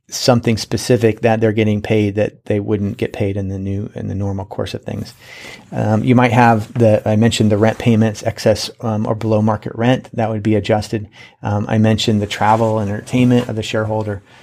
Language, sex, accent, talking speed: English, male, American, 210 wpm